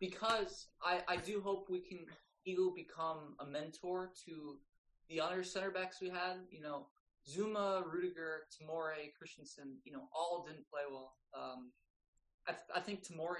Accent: American